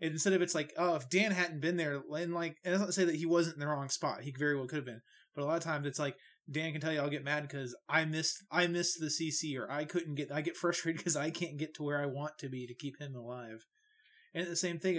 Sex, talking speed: male, 310 wpm